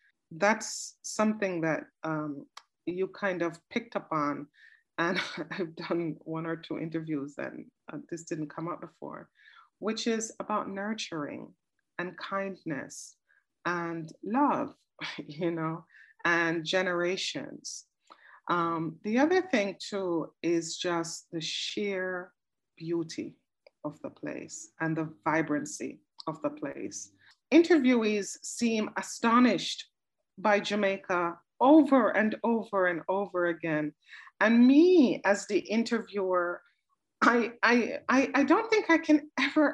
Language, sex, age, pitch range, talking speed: English, female, 30-49, 170-245 Hz, 120 wpm